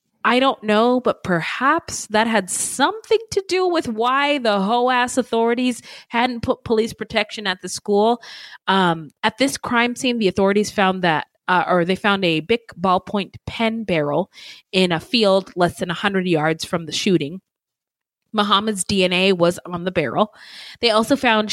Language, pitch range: English, 175-230 Hz